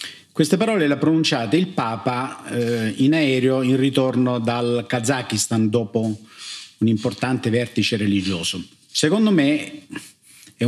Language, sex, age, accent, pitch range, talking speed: Italian, male, 50-69, native, 110-145 Hz, 125 wpm